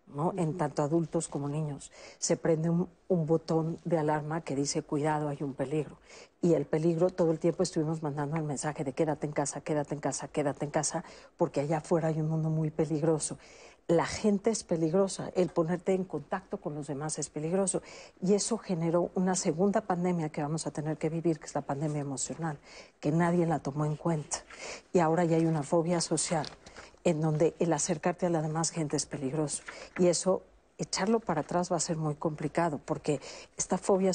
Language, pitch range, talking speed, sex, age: Spanish, 150-175 Hz, 195 wpm, female, 50-69